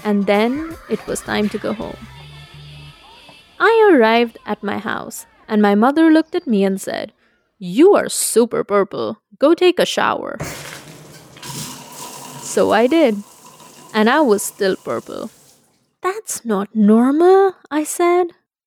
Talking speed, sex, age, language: 135 wpm, female, 20-39, Italian